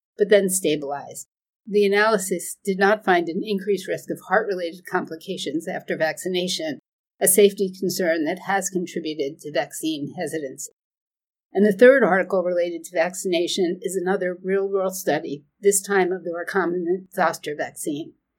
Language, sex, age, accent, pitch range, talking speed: English, female, 50-69, American, 175-205 Hz, 140 wpm